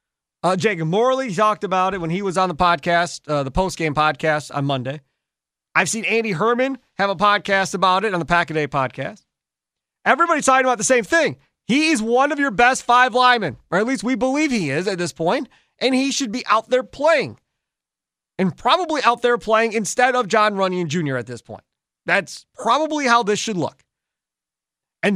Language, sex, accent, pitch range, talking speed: English, male, American, 160-245 Hz, 195 wpm